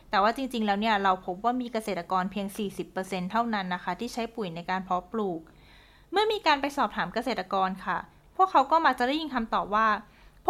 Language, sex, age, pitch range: Thai, female, 20-39, 200-270 Hz